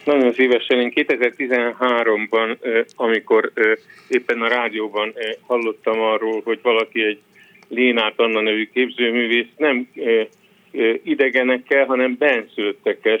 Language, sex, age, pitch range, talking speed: Hungarian, male, 50-69, 115-145 Hz, 95 wpm